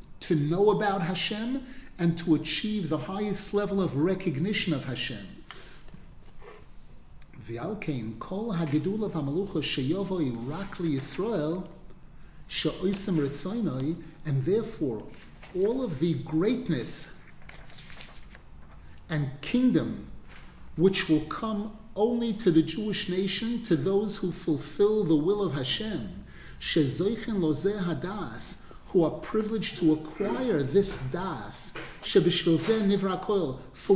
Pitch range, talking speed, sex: 155-200 Hz, 90 wpm, male